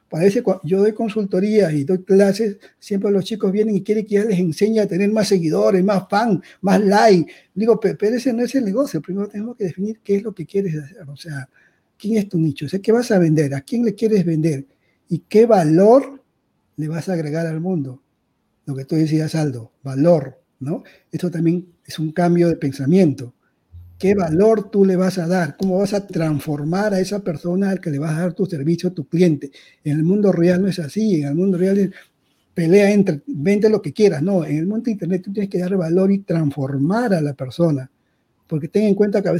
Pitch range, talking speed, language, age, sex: 160-205 Hz, 225 wpm, Spanish, 50-69, male